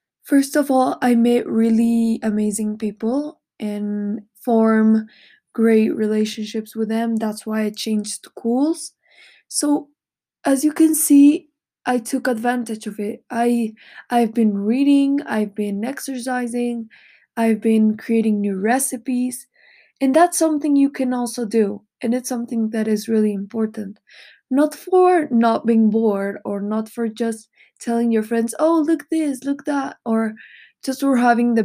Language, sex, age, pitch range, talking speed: Spanish, female, 20-39, 220-260 Hz, 145 wpm